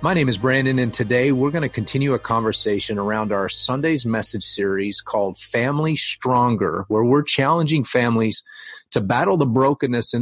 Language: English